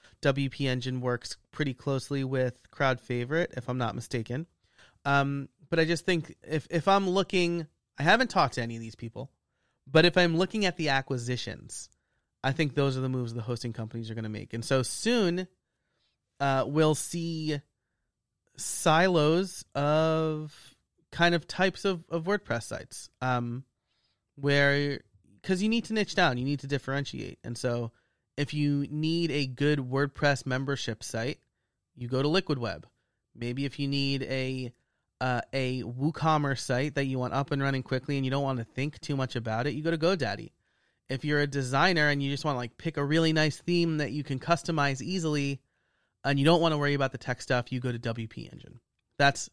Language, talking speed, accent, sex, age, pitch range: English, 190 wpm, American, male, 30-49, 125-155 Hz